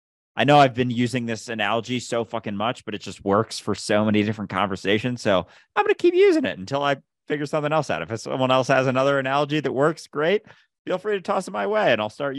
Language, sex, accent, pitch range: English, male, American, 100-145 Hz